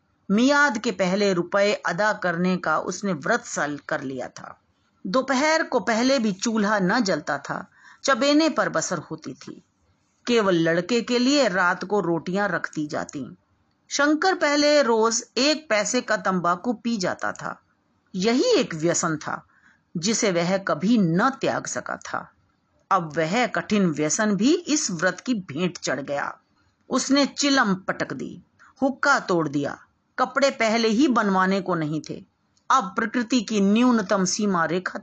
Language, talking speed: Hindi, 150 wpm